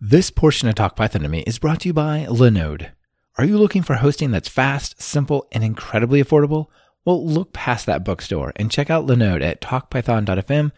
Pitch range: 100-135 Hz